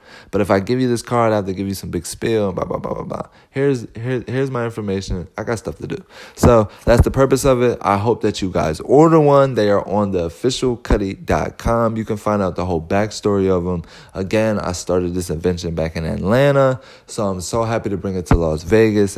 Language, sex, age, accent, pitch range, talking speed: English, male, 20-39, American, 90-115 Hz, 235 wpm